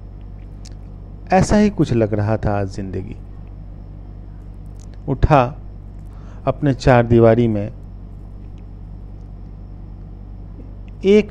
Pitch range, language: 95-105 Hz, Hindi